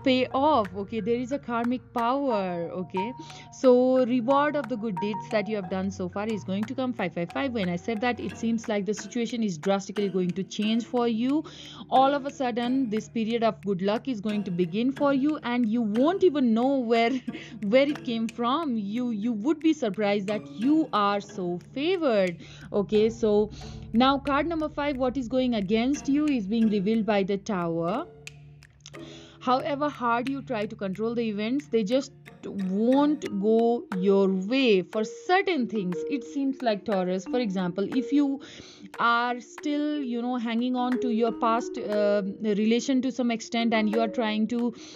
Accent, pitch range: Indian, 210-255 Hz